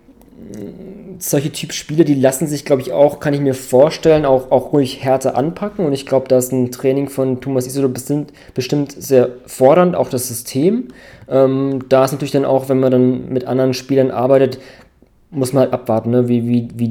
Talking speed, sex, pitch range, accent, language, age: 200 wpm, male, 125-135 Hz, German, German, 20-39